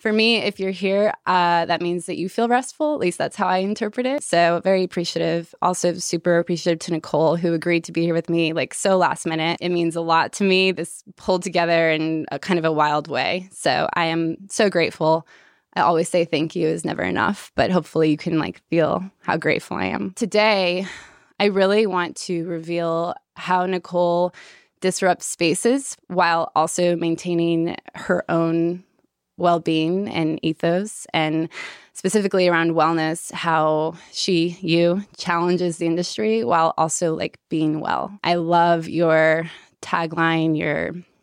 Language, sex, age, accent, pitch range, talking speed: English, female, 20-39, American, 165-185 Hz, 165 wpm